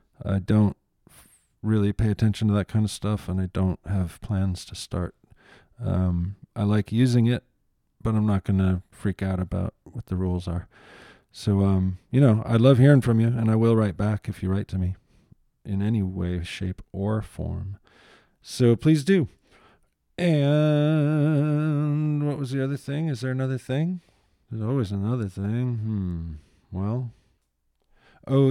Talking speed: 165 wpm